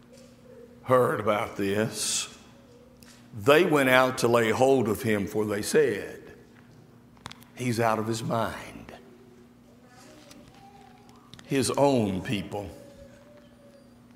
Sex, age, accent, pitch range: male, 60-79, American, 110-160 Hz